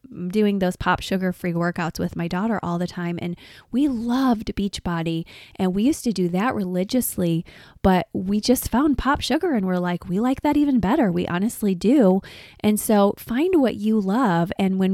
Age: 20-39